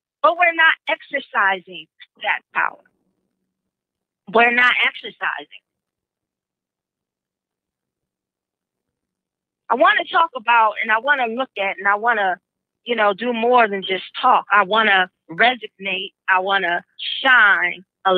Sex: female